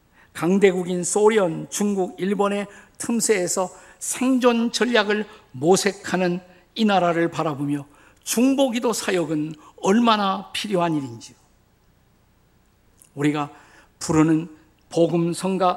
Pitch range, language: 145-210 Hz, Korean